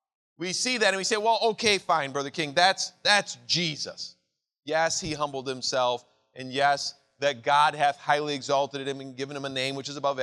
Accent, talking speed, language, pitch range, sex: American, 200 wpm, English, 125-160 Hz, male